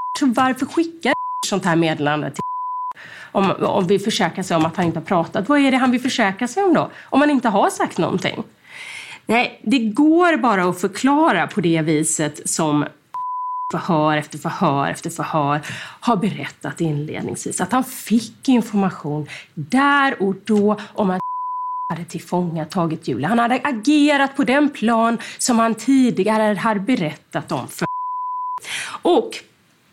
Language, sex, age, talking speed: Swedish, female, 30-49, 155 wpm